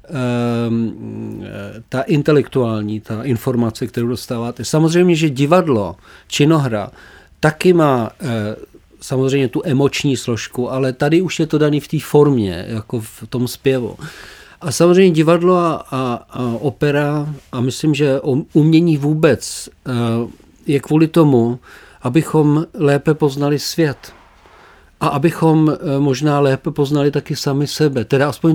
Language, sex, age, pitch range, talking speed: Slovak, male, 50-69, 125-160 Hz, 120 wpm